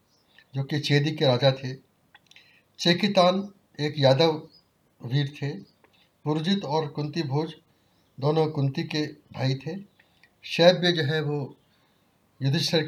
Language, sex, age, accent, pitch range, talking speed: Hindi, male, 60-79, native, 135-170 Hz, 115 wpm